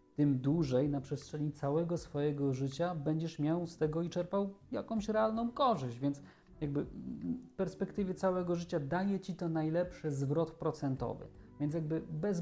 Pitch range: 130-165 Hz